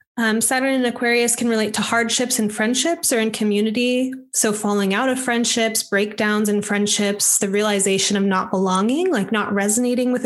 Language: English